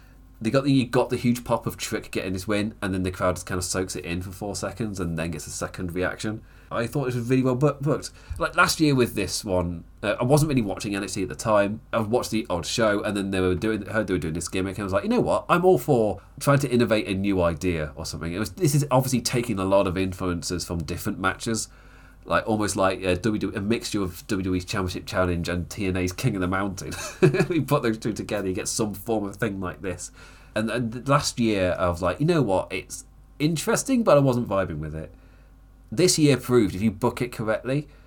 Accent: British